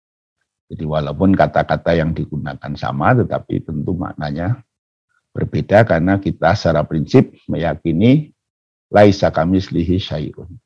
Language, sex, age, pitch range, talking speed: Indonesian, male, 50-69, 80-115 Hz, 105 wpm